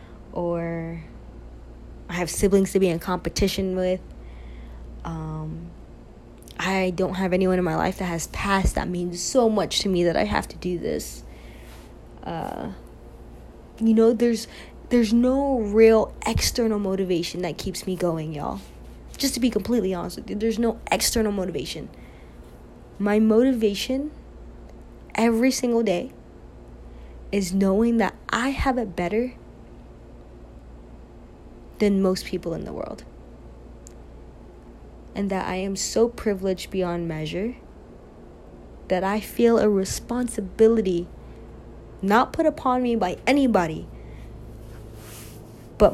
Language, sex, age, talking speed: English, female, 20-39, 125 wpm